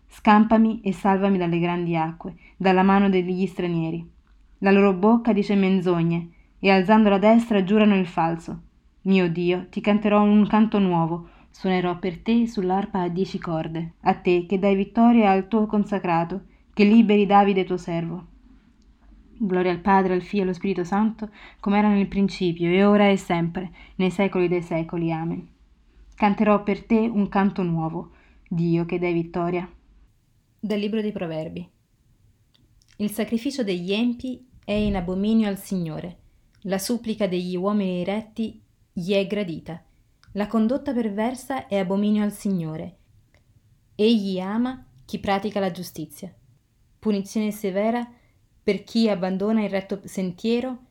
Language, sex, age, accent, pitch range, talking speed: Italian, female, 20-39, native, 175-210 Hz, 145 wpm